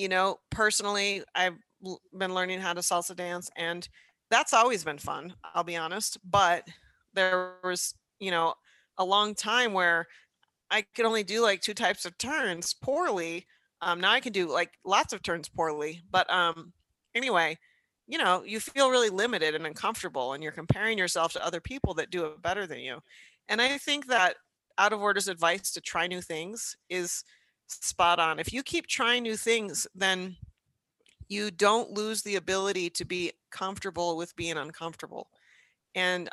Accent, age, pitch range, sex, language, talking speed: American, 30-49, 175-220 Hz, female, English, 175 wpm